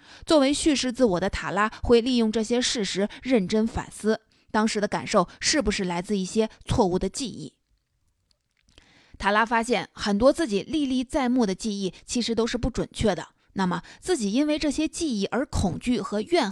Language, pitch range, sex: Chinese, 195-245 Hz, female